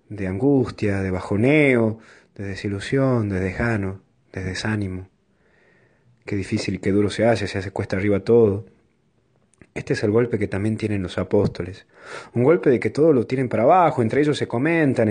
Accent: Argentinian